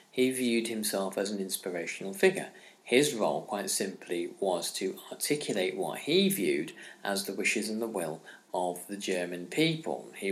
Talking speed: 165 wpm